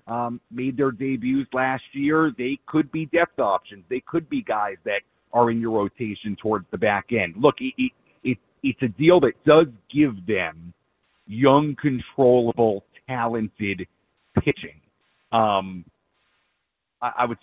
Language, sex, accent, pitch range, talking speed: English, male, American, 105-130 Hz, 150 wpm